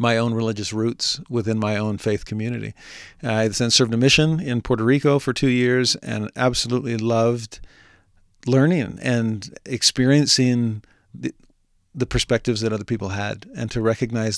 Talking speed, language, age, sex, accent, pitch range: 155 wpm, English, 40-59, male, American, 110-125 Hz